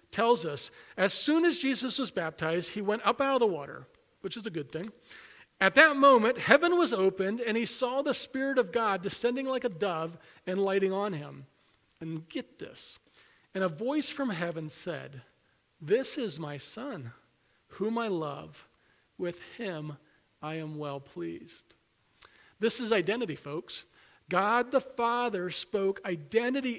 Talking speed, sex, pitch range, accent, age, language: 160 wpm, male, 180-260 Hz, American, 40-59, English